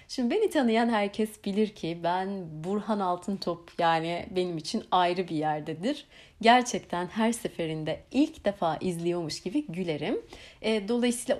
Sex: female